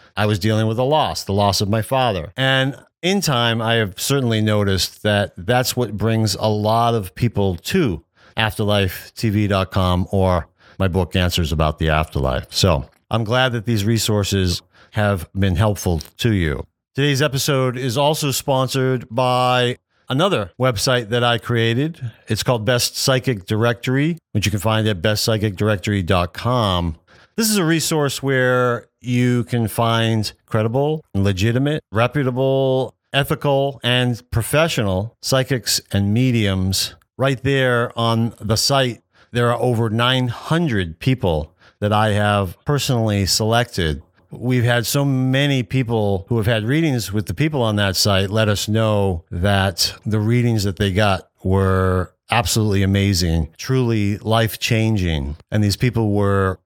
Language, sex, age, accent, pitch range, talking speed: English, male, 40-59, American, 100-125 Hz, 140 wpm